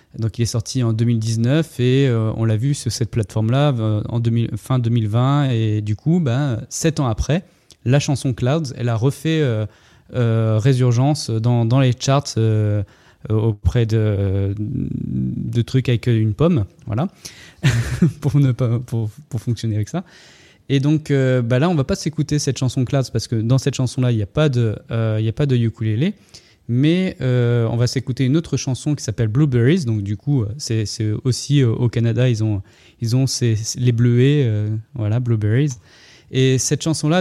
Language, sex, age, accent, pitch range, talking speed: French, male, 20-39, French, 115-140 Hz, 190 wpm